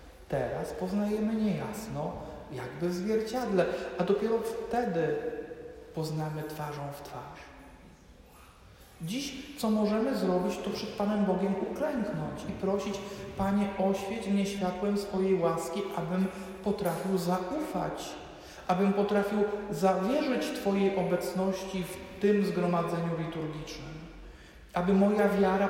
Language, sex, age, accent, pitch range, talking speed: Polish, male, 50-69, native, 160-205 Hz, 105 wpm